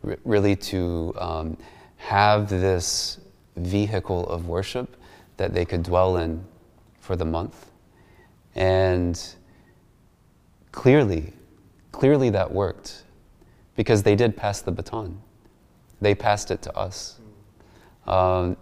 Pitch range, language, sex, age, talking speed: 85-105 Hz, English, male, 30-49, 105 wpm